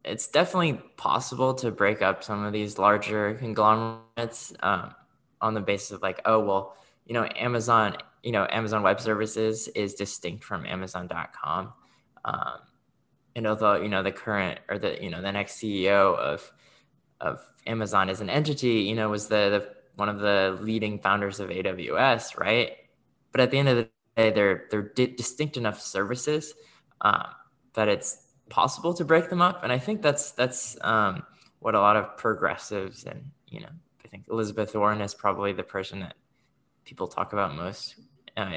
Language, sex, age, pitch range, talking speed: English, male, 20-39, 100-125 Hz, 175 wpm